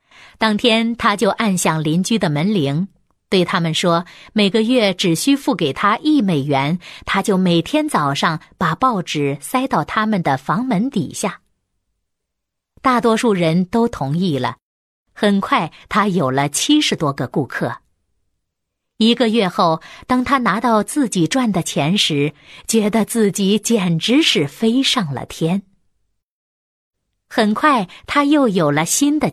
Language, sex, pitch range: Chinese, female, 165-240 Hz